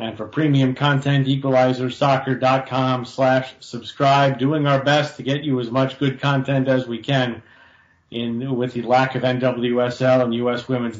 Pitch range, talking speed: 120-140 Hz, 155 wpm